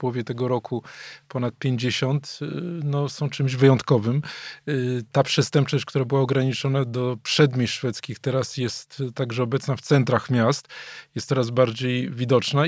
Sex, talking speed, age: male, 130 wpm, 20-39